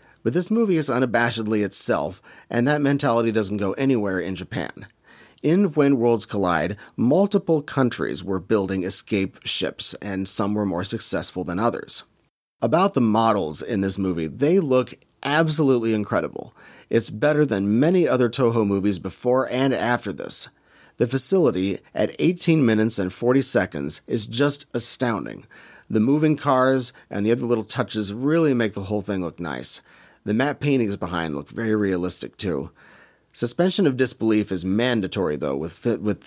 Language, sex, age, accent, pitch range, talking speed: English, male, 30-49, American, 100-130 Hz, 155 wpm